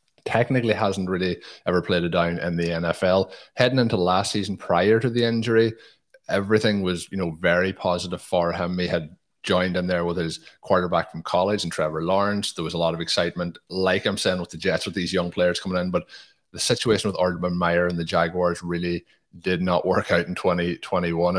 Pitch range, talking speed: 90-105 Hz, 205 wpm